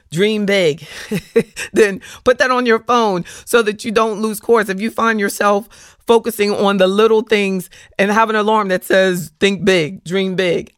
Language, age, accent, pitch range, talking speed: English, 40-59, American, 170-235 Hz, 185 wpm